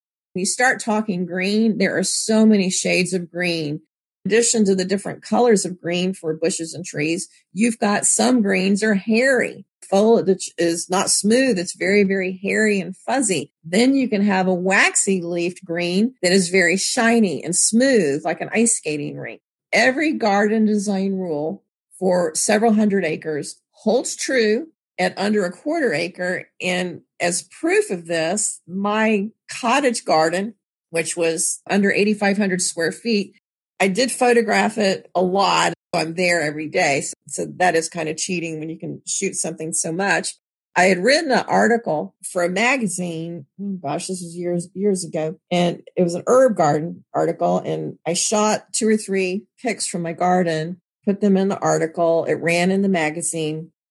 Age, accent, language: 50-69, American, English